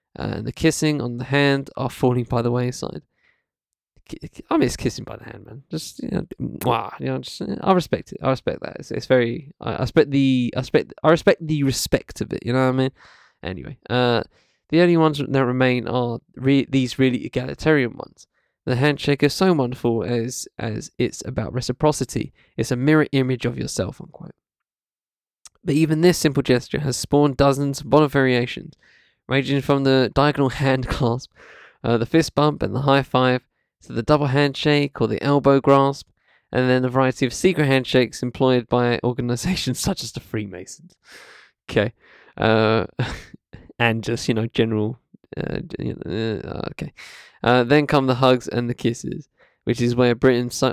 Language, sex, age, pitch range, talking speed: English, male, 20-39, 120-140 Hz, 165 wpm